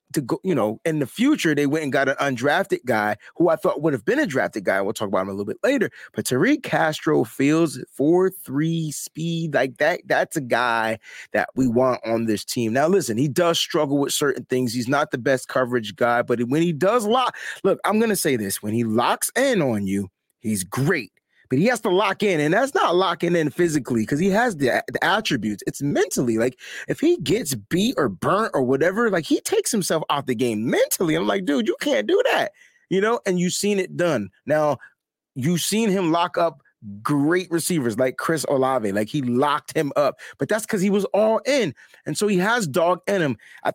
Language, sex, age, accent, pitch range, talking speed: English, male, 30-49, American, 130-185 Hz, 220 wpm